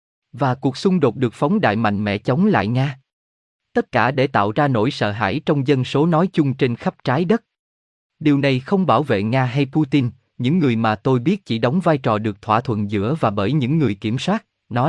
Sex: male